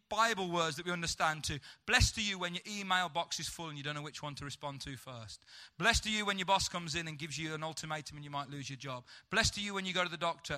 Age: 30-49